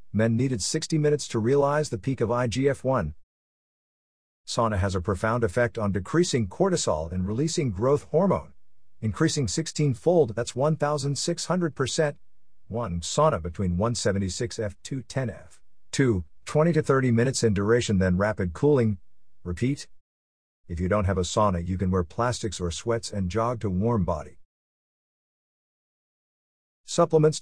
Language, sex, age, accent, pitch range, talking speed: English, male, 50-69, American, 95-125 Hz, 130 wpm